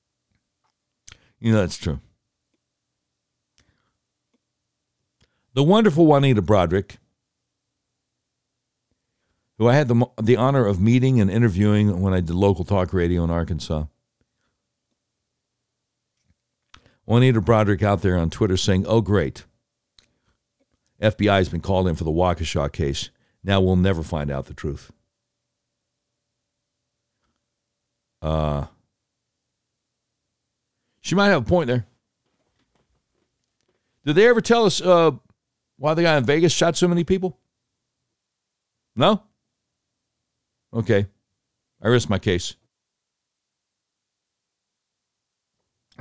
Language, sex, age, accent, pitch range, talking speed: English, male, 60-79, American, 100-130 Hz, 105 wpm